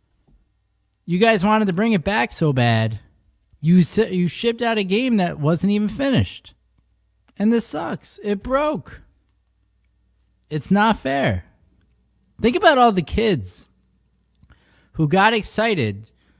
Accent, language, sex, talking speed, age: American, English, male, 130 wpm, 20-39